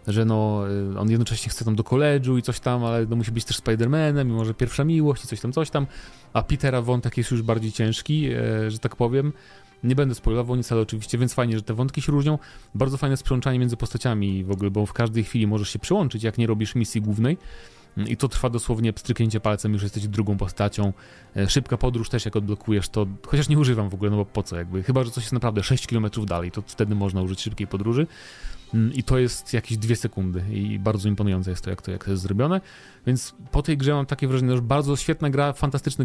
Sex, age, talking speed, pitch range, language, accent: male, 30-49, 235 wpm, 105-125 Hz, Polish, native